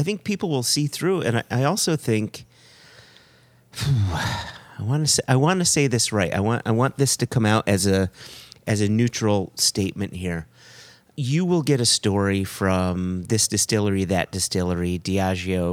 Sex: male